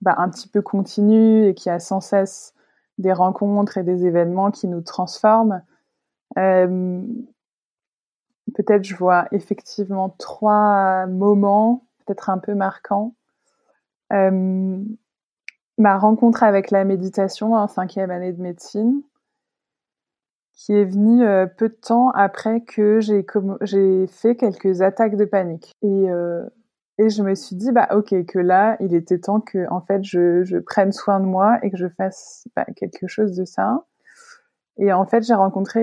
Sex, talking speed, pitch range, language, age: female, 150 wpm, 185-215 Hz, French, 20-39